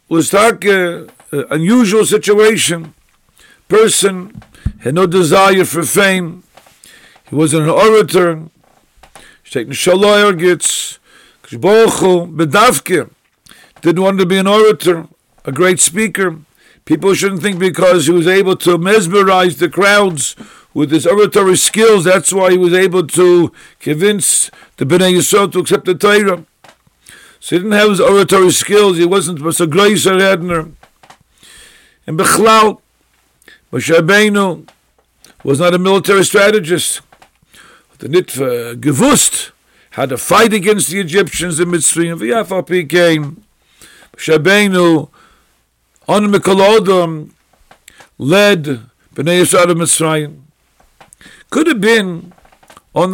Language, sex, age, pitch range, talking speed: English, male, 50-69, 165-200 Hz, 115 wpm